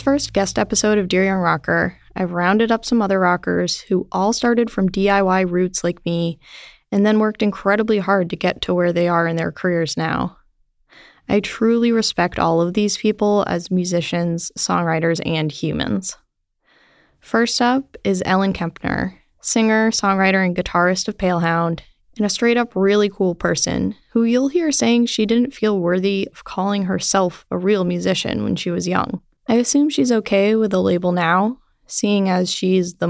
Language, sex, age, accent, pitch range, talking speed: English, female, 10-29, American, 175-220 Hz, 170 wpm